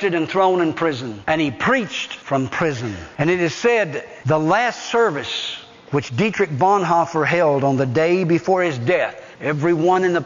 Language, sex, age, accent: English, male, 60-79, American